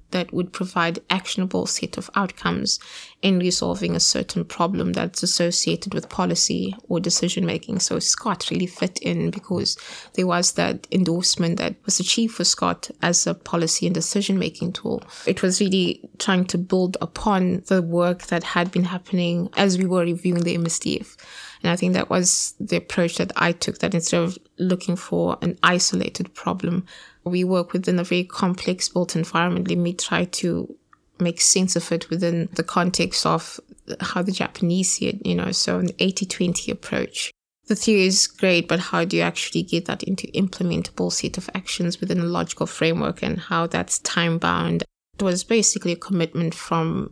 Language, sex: English, female